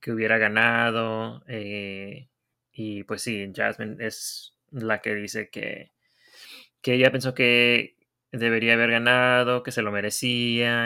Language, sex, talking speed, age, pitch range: English, male, 135 wpm, 20-39, 105-130 Hz